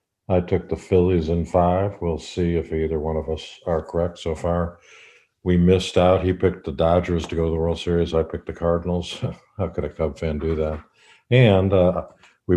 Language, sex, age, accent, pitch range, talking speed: English, male, 50-69, American, 80-95 Hz, 210 wpm